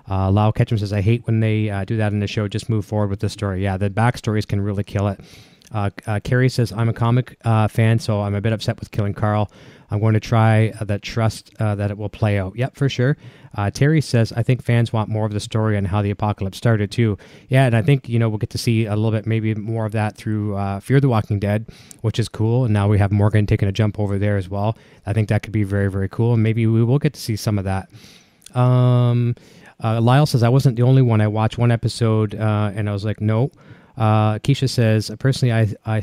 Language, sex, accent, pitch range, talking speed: English, male, American, 105-125 Hz, 265 wpm